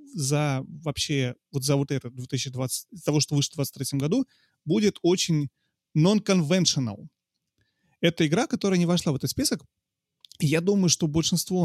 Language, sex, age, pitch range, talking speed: Russian, male, 30-49, 135-170 Hz, 145 wpm